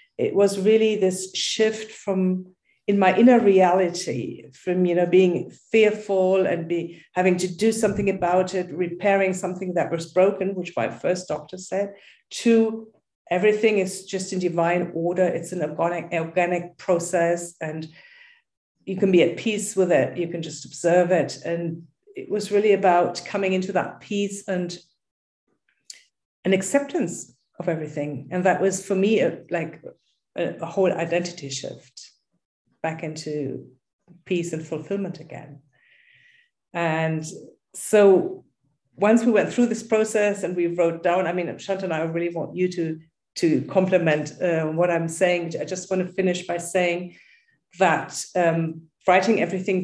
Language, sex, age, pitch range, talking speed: English, female, 50-69, 170-200 Hz, 150 wpm